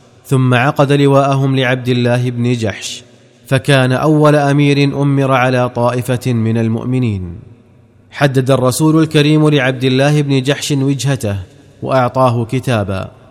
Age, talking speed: 30-49, 115 wpm